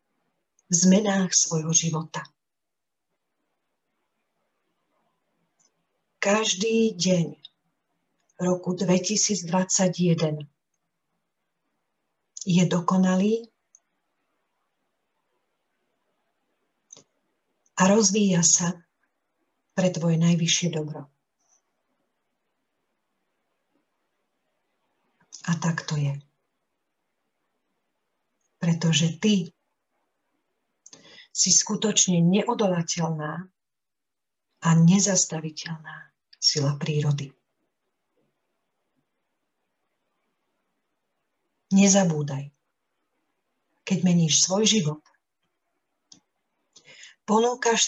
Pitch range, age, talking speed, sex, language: 160-195 Hz, 50-69, 45 wpm, female, Slovak